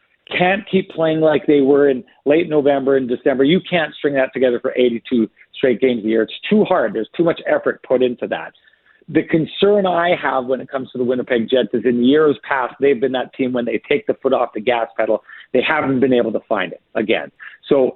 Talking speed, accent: 230 wpm, American